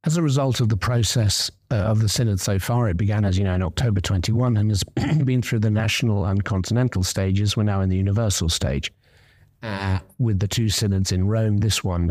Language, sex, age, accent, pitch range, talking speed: English, male, 50-69, British, 95-115 Hz, 215 wpm